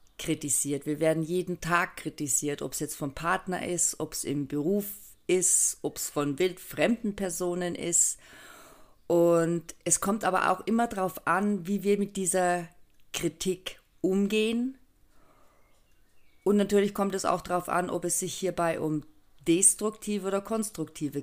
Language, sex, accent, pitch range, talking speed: German, female, German, 150-190 Hz, 145 wpm